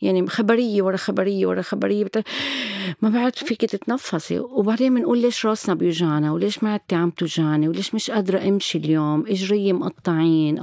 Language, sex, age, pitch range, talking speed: Arabic, female, 40-59, 165-230 Hz, 150 wpm